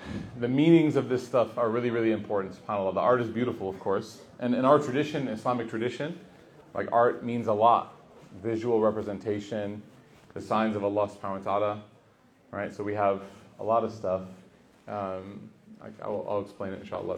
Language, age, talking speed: English, 30-49, 175 wpm